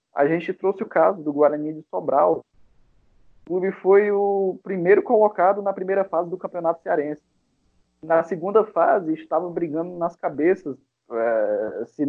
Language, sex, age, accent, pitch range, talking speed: Portuguese, male, 20-39, Brazilian, 145-185 Hz, 145 wpm